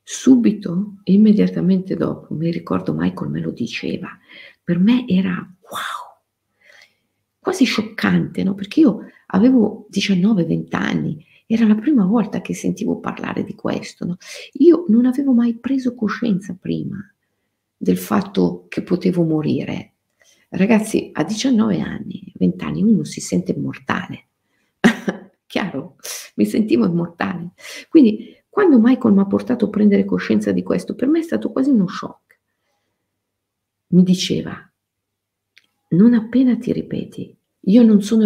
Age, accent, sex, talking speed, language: 50-69, native, female, 130 wpm, Italian